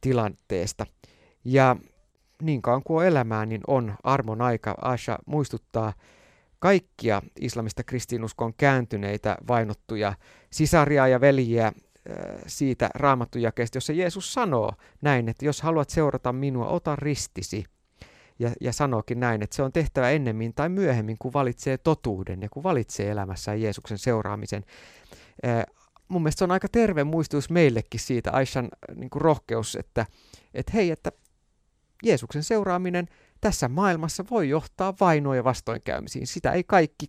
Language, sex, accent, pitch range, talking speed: Finnish, male, native, 115-155 Hz, 130 wpm